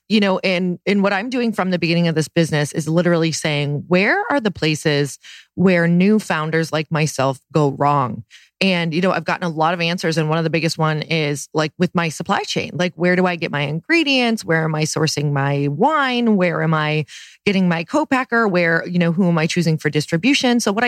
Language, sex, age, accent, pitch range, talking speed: English, female, 30-49, American, 165-205 Hz, 225 wpm